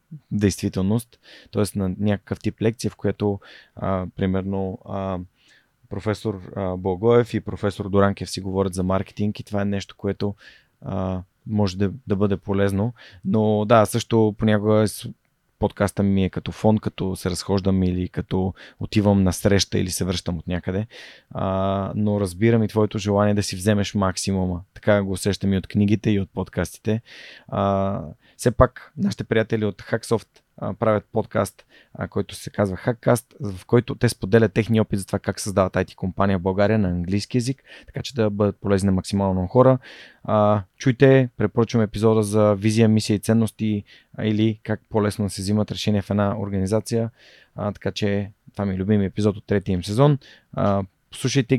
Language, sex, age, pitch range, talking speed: Bulgarian, male, 20-39, 95-110 Hz, 165 wpm